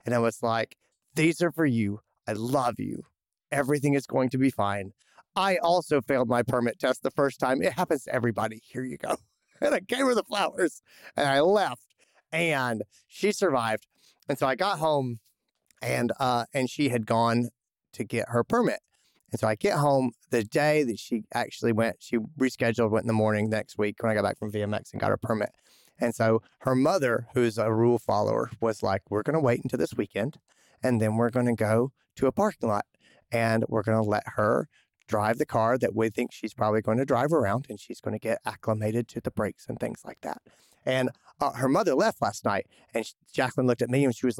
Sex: male